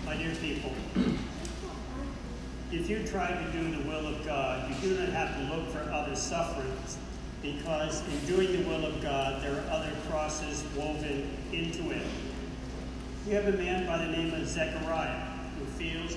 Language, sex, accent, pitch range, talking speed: English, male, American, 135-180 Hz, 170 wpm